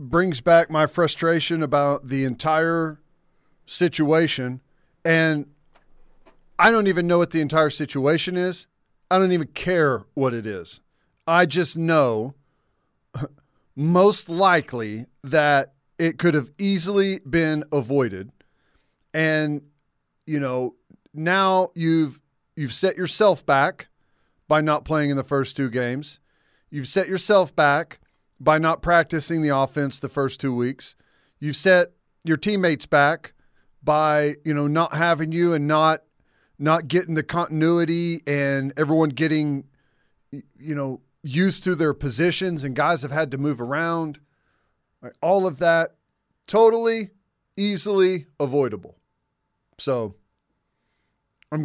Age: 40-59